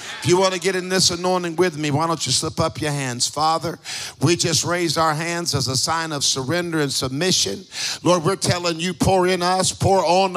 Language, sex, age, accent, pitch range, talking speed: English, male, 50-69, American, 160-190 Hz, 225 wpm